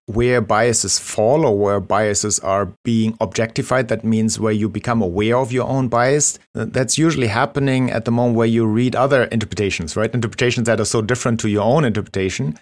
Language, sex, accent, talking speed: English, male, German, 190 wpm